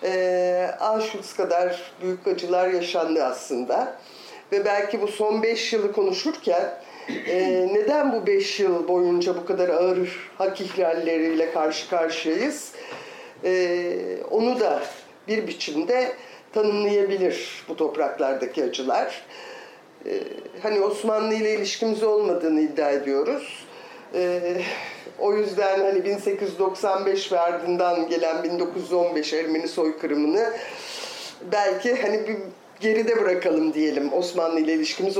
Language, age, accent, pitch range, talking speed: Turkish, 50-69, native, 175-225 Hz, 110 wpm